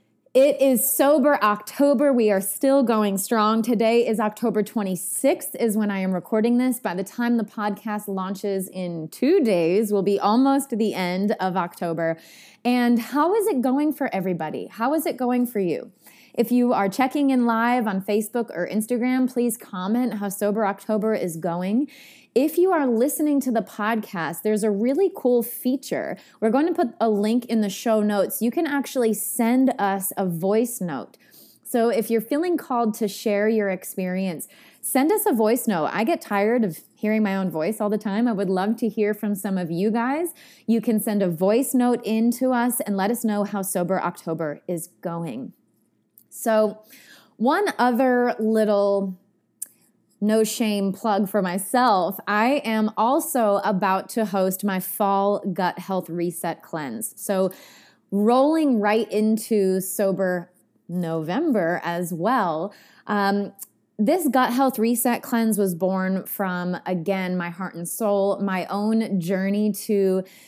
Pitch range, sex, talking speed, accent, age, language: 195-245 Hz, female, 165 wpm, American, 20-39, English